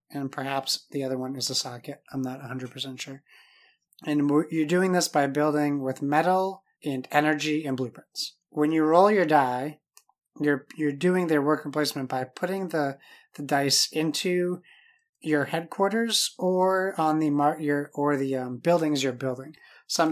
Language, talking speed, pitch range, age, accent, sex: English, 165 wpm, 140-170 Hz, 30-49, American, male